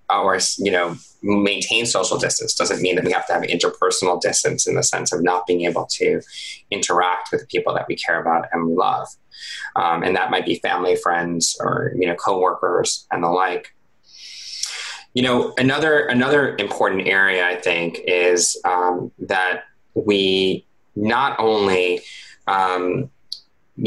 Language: English